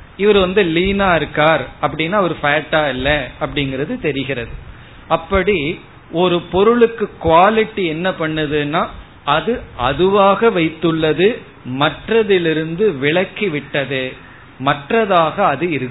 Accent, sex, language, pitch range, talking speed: native, male, Tamil, 135-175 Hz, 55 wpm